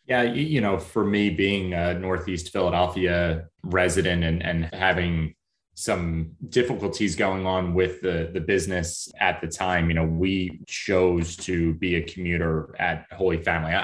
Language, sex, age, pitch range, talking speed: English, male, 30-49, 85-95 Hz, 150 wpm